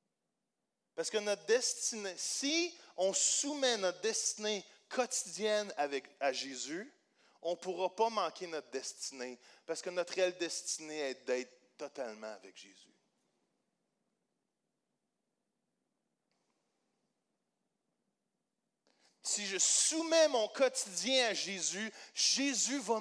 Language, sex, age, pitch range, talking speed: French, male, 30-49, 180-235 Hz, 100 wpm